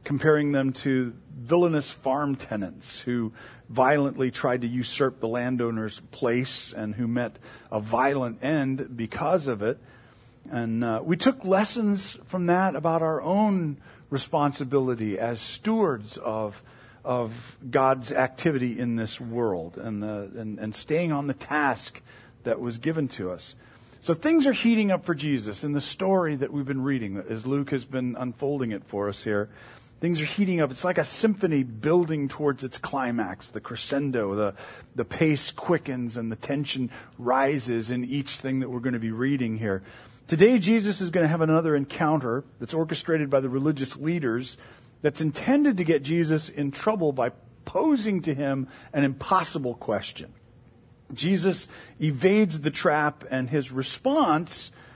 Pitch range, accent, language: 120-160 Hz, American, English